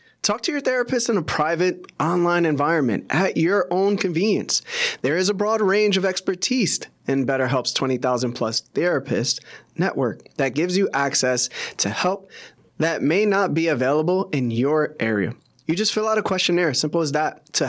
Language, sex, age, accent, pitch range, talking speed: English, male, 20-39, American, 145-205 Hz, 170 wpm